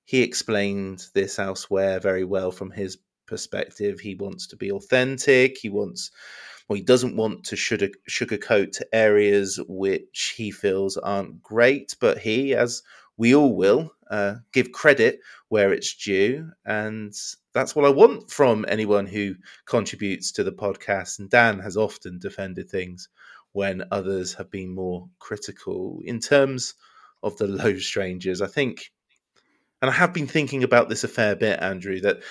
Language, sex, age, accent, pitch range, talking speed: English, male, 20-39, British, 100-120 Hz, 155 wpm